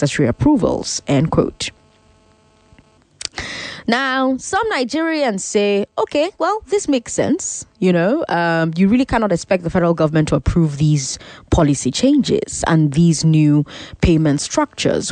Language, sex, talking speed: English, female, 125 wpm